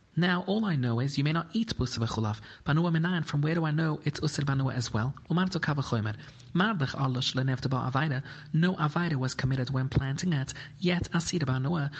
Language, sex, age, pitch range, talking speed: English, male, 30-49, 130-155 Hz, 205 wpm